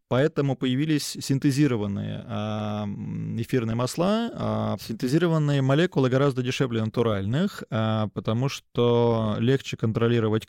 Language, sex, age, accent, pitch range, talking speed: Russian, male, 20-39, native, 110-140 Hz, 80 wpm